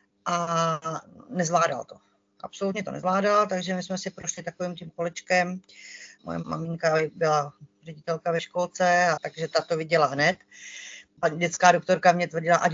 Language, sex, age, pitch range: Czech, female, 30-49, 170-190 Hz